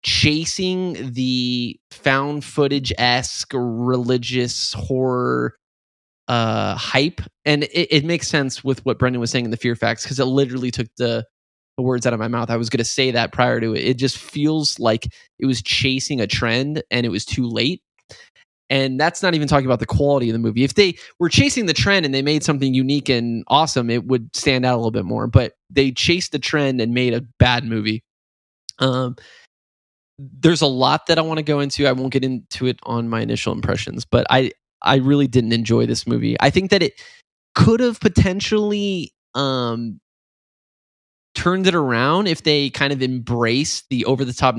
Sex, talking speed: male, 190 wpm